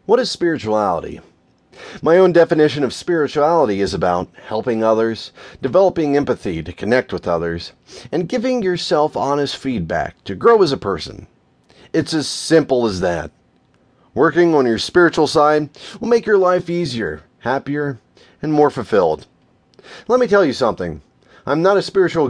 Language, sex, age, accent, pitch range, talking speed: English, male, 30-49, American, 130-185 Hz, 150 wpm